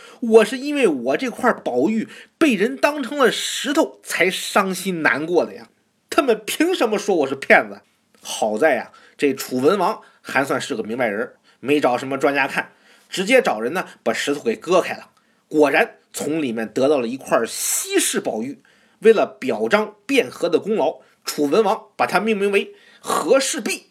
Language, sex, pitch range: Chinese, male, 200-260 Hz